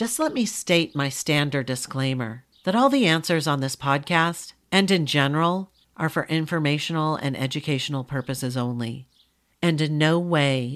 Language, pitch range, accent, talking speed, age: English, 140-185 Hz, American, 155 wpm, 40-59